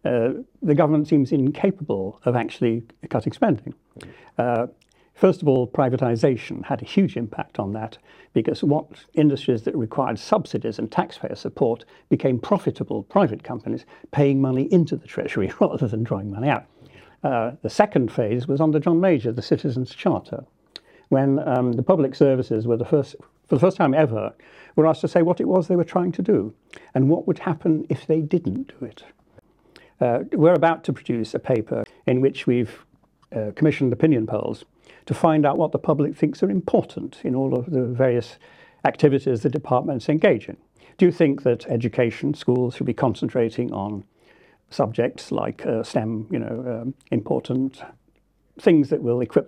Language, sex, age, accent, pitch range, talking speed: English, male, 60-79, British, 125-165 Hz, 175 wpm